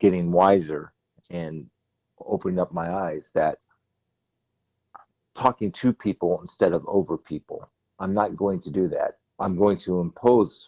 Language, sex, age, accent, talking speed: English, male, 50-69, American, 140 wpm